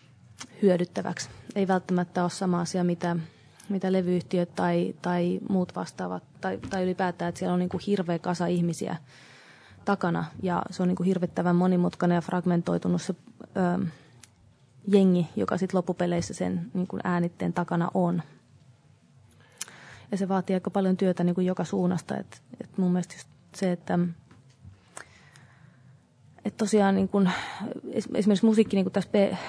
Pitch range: 175-190 Hz